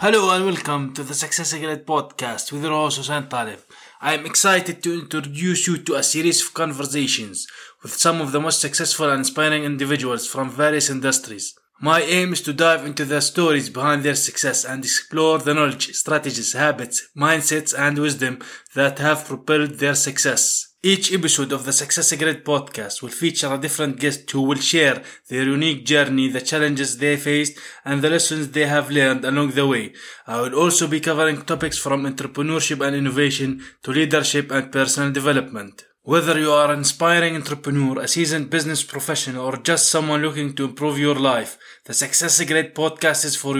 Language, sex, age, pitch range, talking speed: English, male, 20-39, 140-160 Hz, 185 wpm